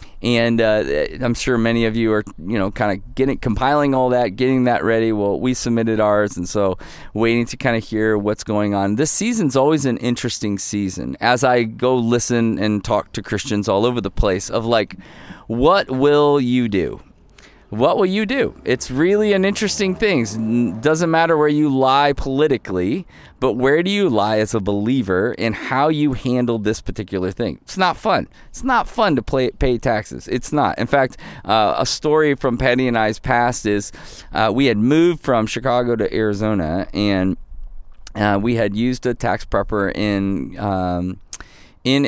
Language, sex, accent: English, male, American